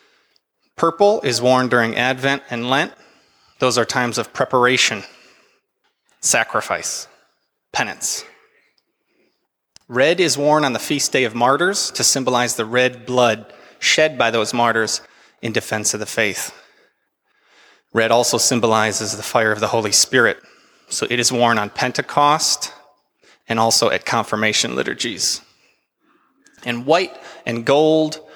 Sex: male